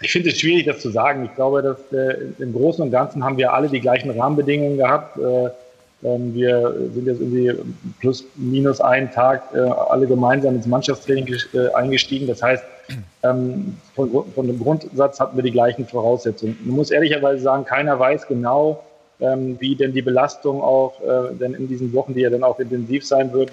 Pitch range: 125-135 Hz